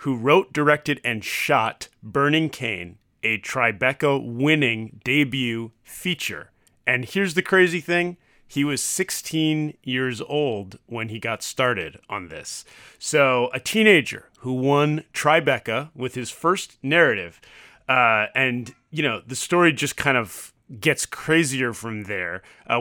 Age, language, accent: 30-49, English, American